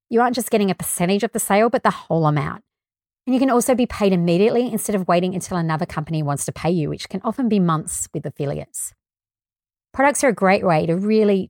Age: 30-49